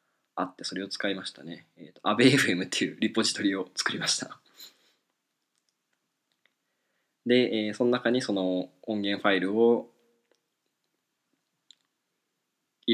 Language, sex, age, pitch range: Japanese, male, 20-39, 105-125 Hz